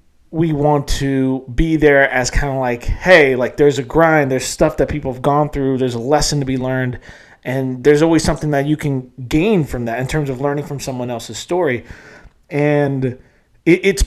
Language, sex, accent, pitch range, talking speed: English, male, American, 125-150 Hz, 200 wpm